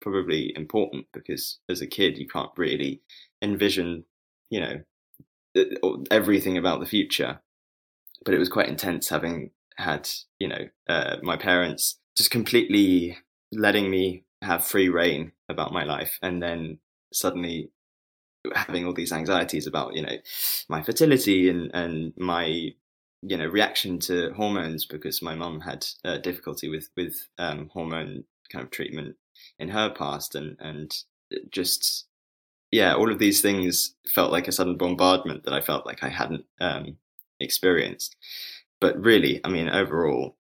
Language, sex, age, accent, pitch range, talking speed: English, male, 20-39, British, 80-95 Hz, 150 wpm